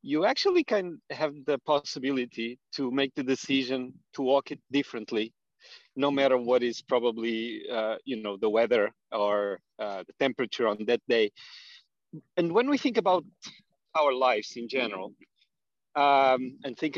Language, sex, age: English, male, 40-59